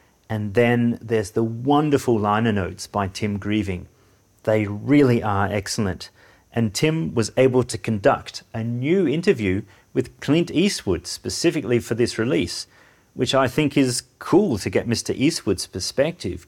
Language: English